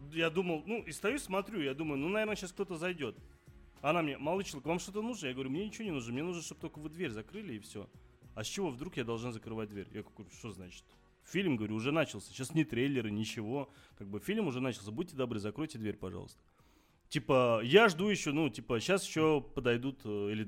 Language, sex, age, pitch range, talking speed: Russian, male, 30-49, 110-165 Hz, 220 wpm